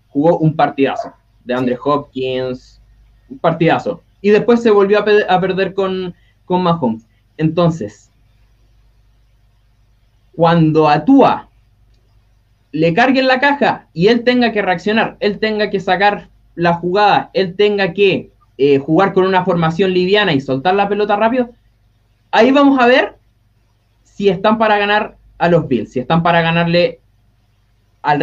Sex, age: male, 20-39